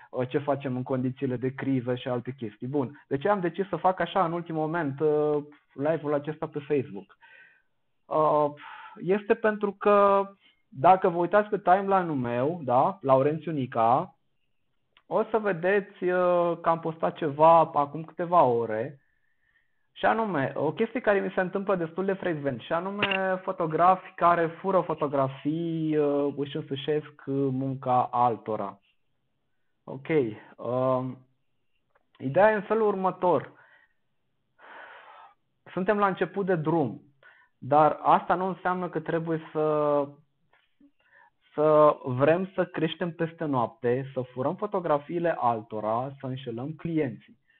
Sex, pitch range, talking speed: male, 135-185 Hz, 125 wpm